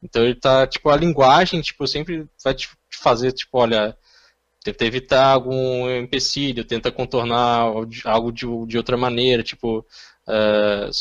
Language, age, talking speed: Portuguese, 10-29, 140 wpm